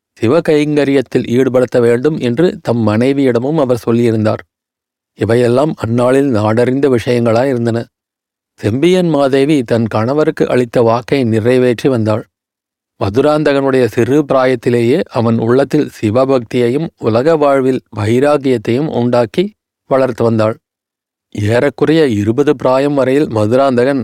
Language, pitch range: Tamil, 115-140 Hz